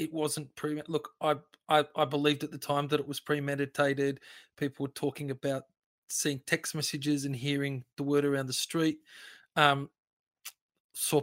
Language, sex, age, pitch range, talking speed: English, male, 20-39, 140-150 Hz, 160 wpm